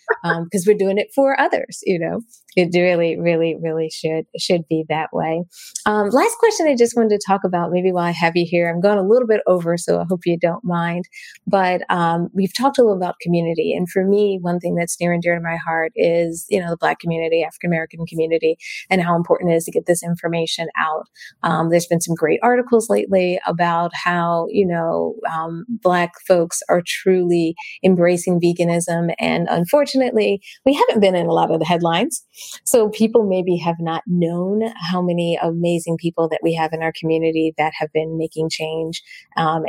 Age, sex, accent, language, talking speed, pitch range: 30-49, female, American, English, 205 wpm, 165-195 Hz